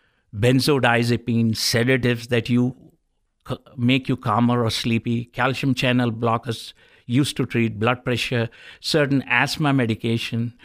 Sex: male